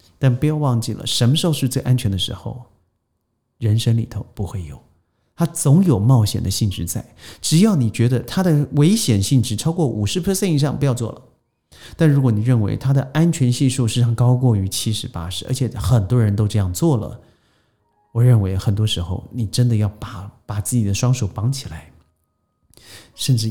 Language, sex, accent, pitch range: Chinese, male, native, 100-130 Hz